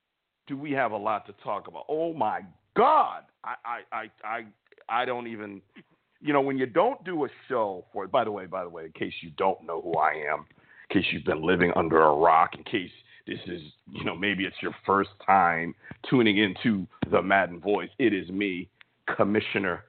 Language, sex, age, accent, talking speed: English, male, 50-69, American, 210 wpm